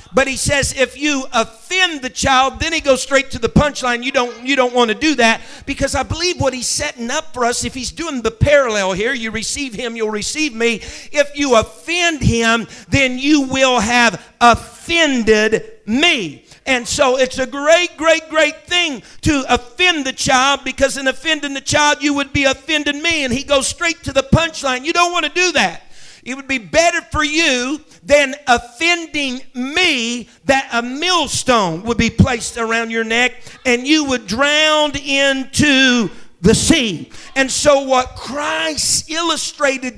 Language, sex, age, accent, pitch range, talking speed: English, male, 50-69, American, 240-300 Hz, 180 wpm